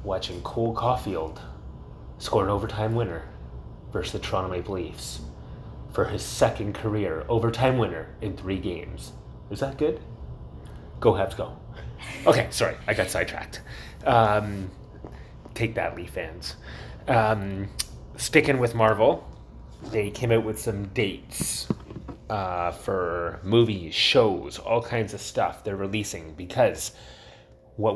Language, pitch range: English, 90-115 Hz